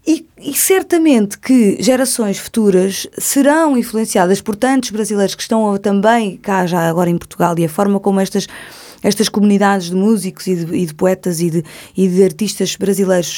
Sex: female